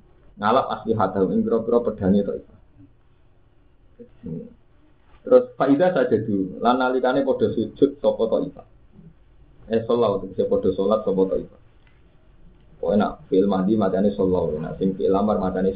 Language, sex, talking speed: Indonesian, male, 135 wpm